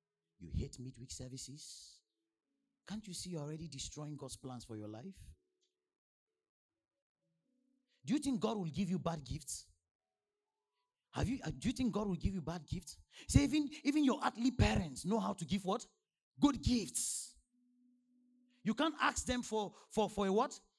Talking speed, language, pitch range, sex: 165 wpm, English, 165-270 Hz, male